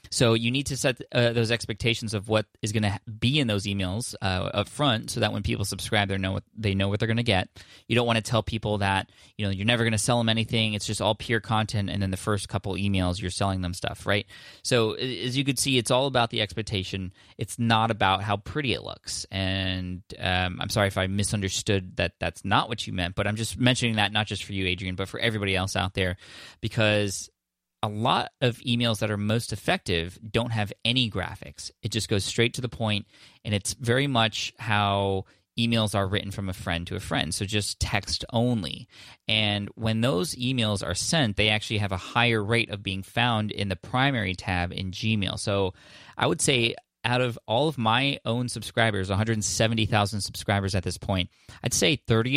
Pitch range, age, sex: 95-115 Hz, 20-39, male